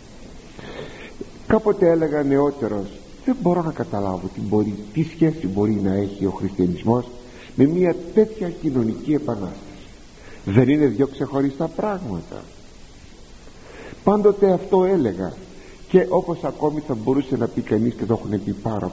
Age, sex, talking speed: 50-69, male, 135 wpm